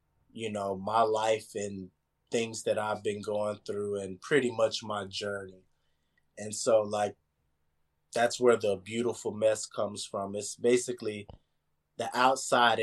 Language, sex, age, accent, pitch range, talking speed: English, male, 20-39, American, 90-115 Hz, 140 wpm